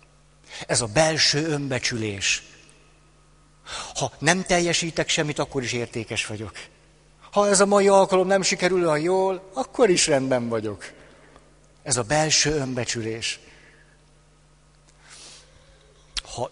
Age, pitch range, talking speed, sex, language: 60-79, 125-165 Hz, 110 wpm, male, Hungarian